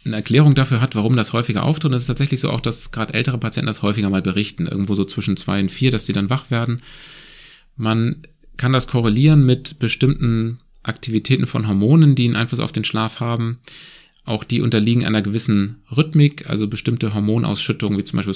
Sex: male